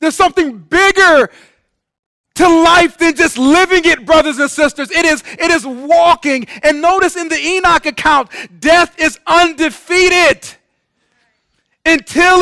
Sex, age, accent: male, 40-59, American